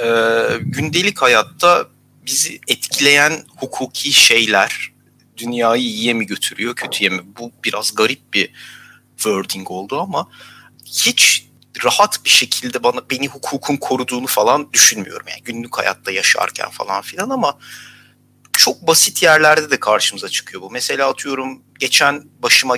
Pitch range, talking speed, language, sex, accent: 115-160 Hz, 125 wpm, Turkish, male, native